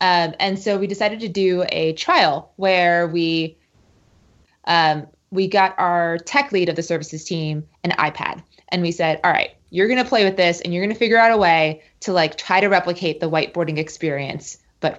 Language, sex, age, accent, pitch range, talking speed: English, female, 20-39, American, 170-205 Hz, 205 wpm